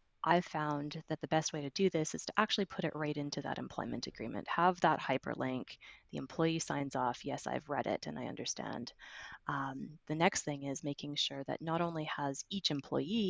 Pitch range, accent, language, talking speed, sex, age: 145-185 Hz, American, English, 210 wpm, female, 20-39